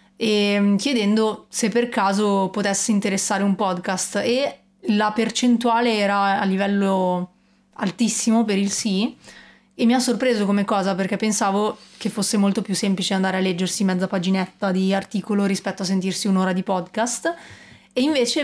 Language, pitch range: Italian, 195-220 Hz